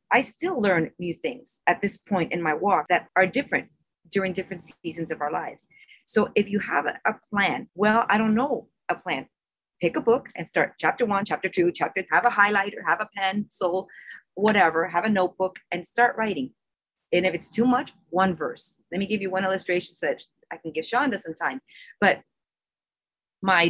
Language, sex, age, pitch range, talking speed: English, female, 30-49, 170-210 Hz, 200 wpm